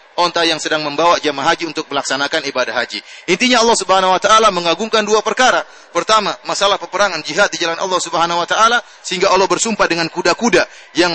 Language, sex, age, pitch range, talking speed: English, male, 30-49, 150-205 Hz, 185 wpm